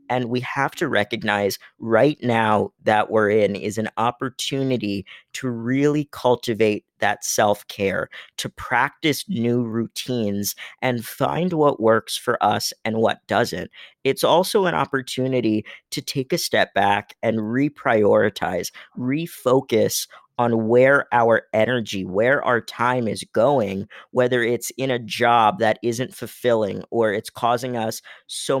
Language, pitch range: English, 110-130 Hz